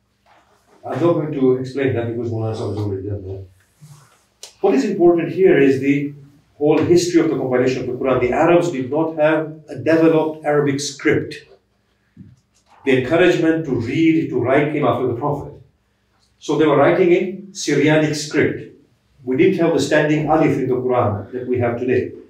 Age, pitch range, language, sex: 50-69, 130-170 Hz, English, male